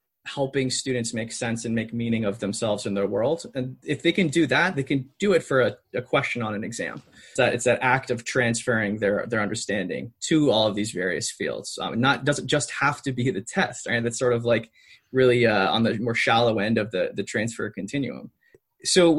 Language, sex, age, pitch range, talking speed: English, male, 20-39, 115-140 Hz, 220 wpm